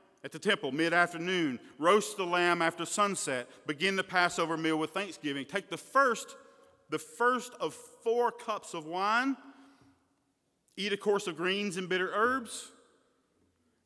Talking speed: 145 wpm